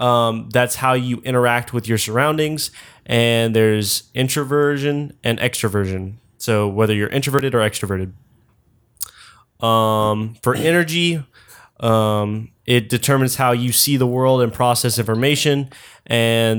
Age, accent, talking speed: 20-39, American, 125 wpm